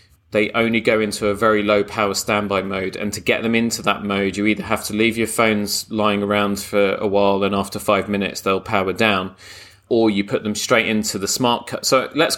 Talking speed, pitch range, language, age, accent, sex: 230 wpm, 100-120 Hz, English, 30-49, British, male